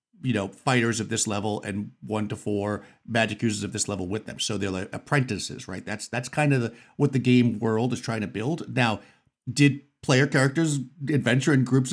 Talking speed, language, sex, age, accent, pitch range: 210 wpm, English, male, 50-69, American, 105-135 Hz